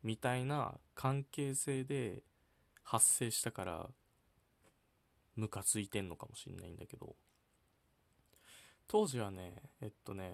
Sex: male